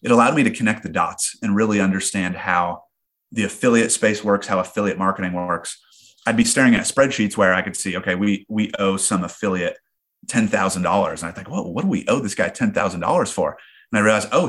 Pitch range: 95-140 Hz